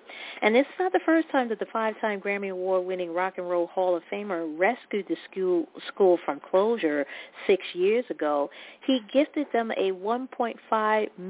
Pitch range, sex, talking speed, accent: 170-205 Hz, female, 160 wpm, American